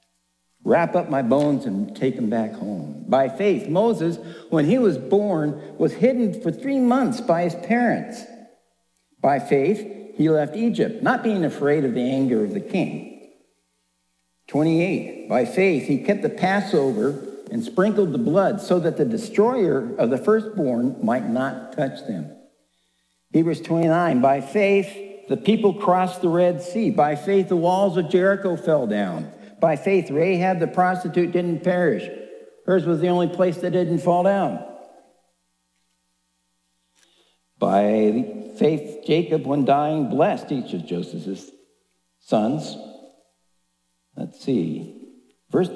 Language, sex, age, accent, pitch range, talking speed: English, male, 60-79, American, 140-200 Hz, 140 wpm